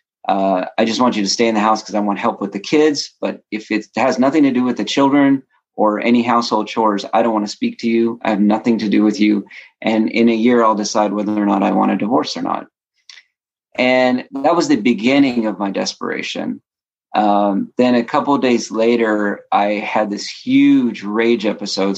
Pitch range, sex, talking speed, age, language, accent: 105-120 Hz, male, 220 wpm, 30-49, English, American